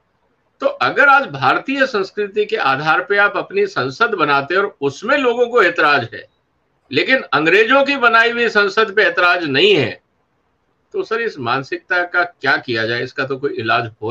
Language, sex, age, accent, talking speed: English, male, 50-69, Indian, 175 wpm